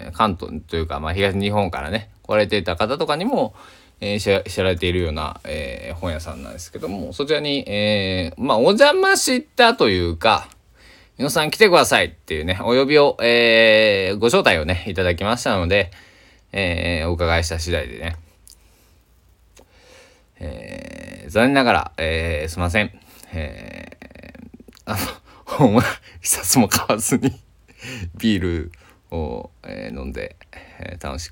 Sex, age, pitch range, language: male, 20-39, 85-105 Hz, Japanese